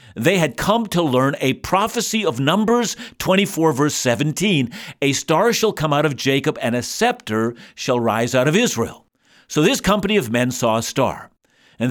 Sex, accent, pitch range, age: male, American, 130-195 Hz, 50-69